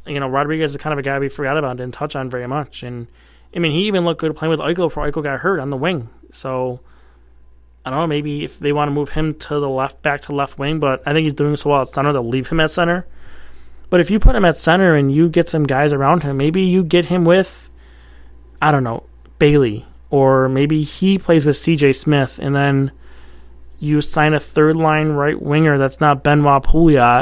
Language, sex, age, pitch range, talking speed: English, male, 20-39, 125-155 Hz, 240 wpm